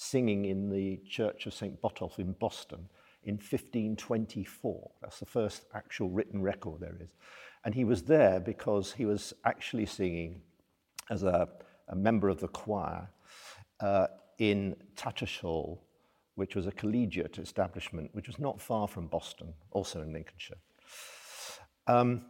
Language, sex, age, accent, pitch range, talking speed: English, male, 50-69, British, 85-105 Hz, 145 wpm